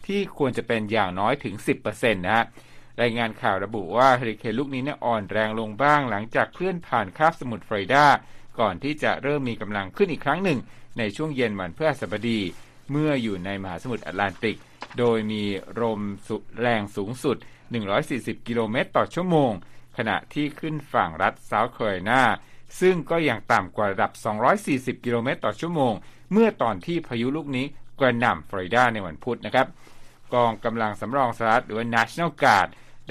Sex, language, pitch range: male, Thai, 110-145 Hz